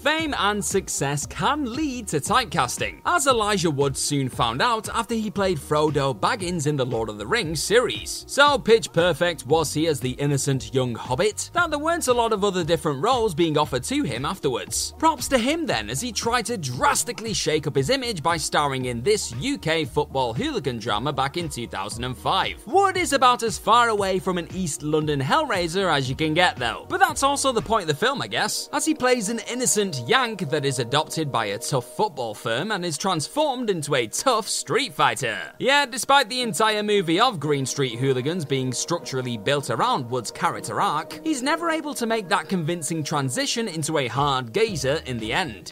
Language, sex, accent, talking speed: English, male, British, 200 wpm